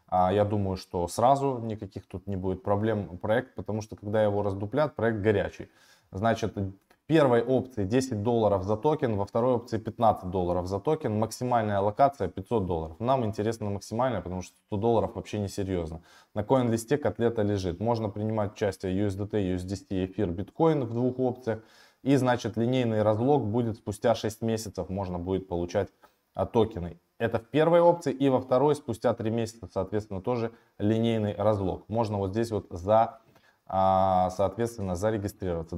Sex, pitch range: male, 95-115 Hz